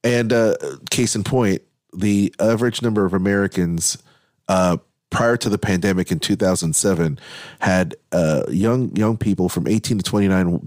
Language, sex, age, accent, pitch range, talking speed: English, male, 30-49, American, 90-110 Hz, 145 wpm